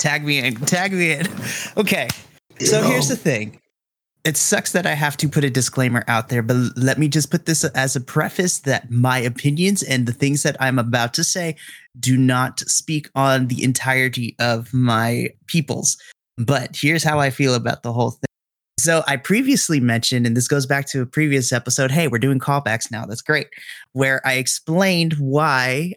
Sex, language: male, English